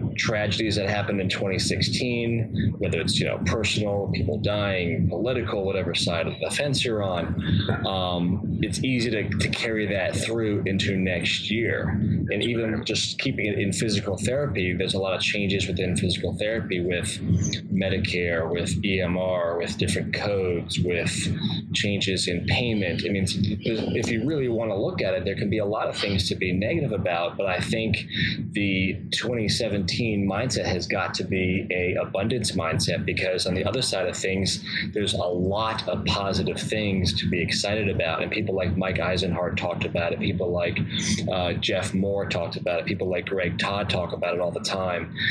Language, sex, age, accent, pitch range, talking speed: English, male, 20-39, American, 95-110 Hz, 180 wpm